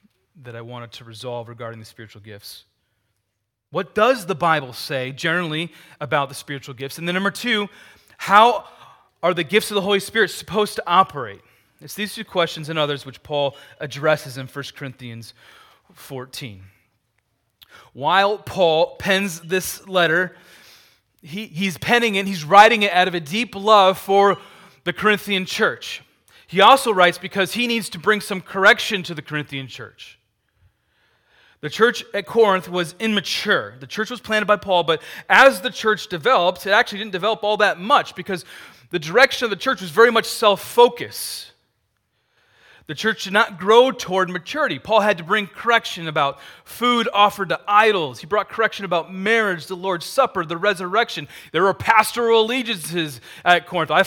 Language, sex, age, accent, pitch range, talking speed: English, male, 30-49, American, 150-215 Hz, 165 wpm